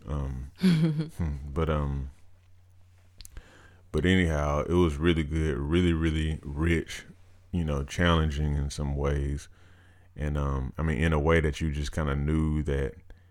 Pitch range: 75-90 Hz